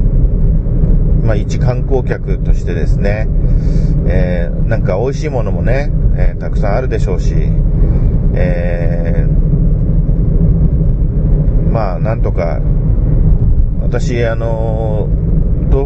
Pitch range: 125-150 Hz